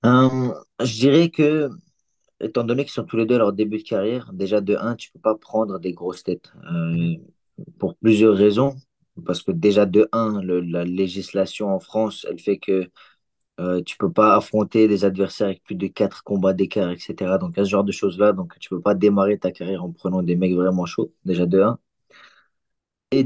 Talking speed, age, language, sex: 210 wpm, 30-49, French, male